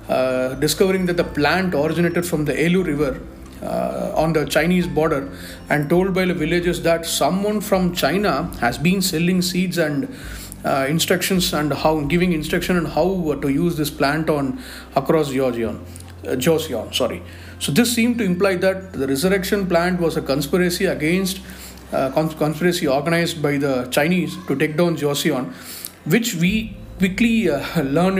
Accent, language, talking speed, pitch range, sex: native, Tamil, 165 wpm, 145-180 Hz, male